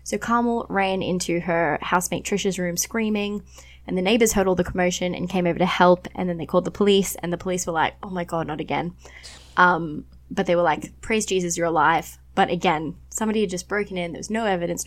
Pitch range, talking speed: 155-195 Hz, 230 wpm